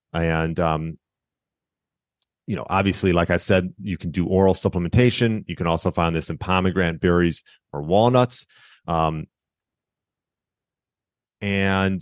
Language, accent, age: English, American, 30-49